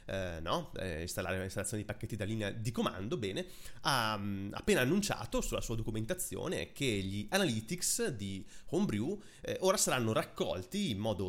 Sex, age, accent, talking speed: male, 30-49, native, 150 wpm